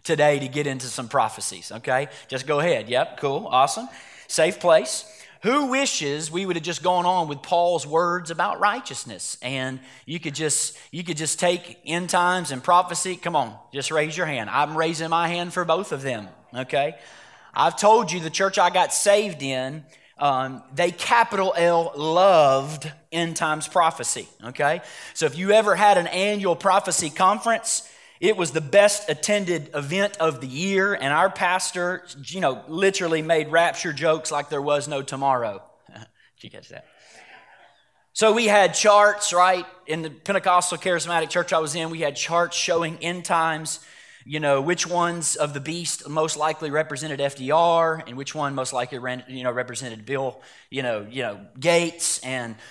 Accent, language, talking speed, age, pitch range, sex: American, English, 175 wpm, 30-49, 145-180 Hz, male